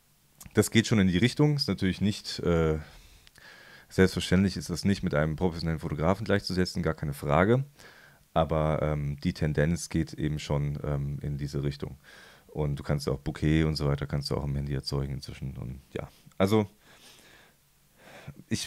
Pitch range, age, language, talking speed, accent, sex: 80-95 Hz, 30-49, German, 165 wpm, German, male